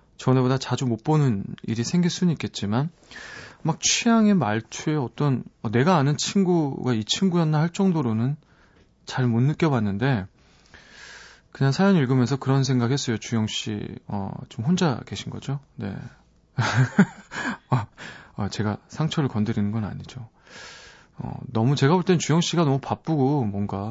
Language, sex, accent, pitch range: Korean, male, native, 115-155 Hz